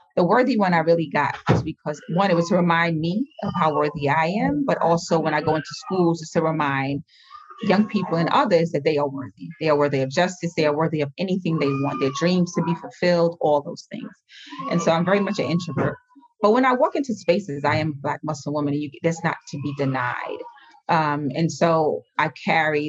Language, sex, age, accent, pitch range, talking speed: English, female, 30-49, American, 150-205 Hz, 230 wpm